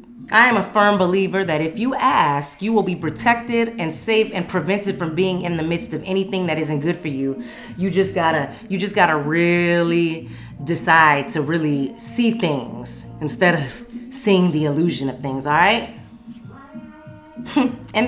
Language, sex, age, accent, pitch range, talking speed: English, female, 30-49, American, 155-225 Hz, 165 wpm